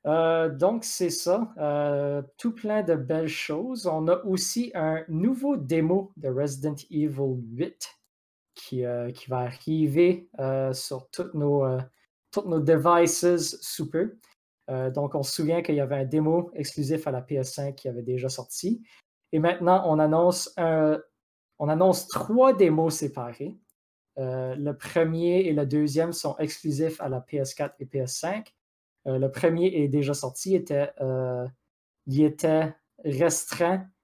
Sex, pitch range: male, 135-175 Hz